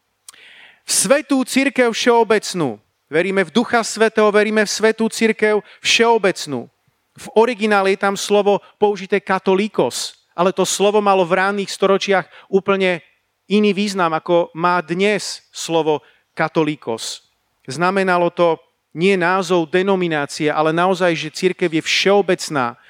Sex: male